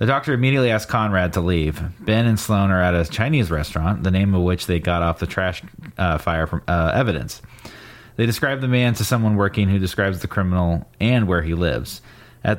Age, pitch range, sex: 30-49, 85-110 Hz, male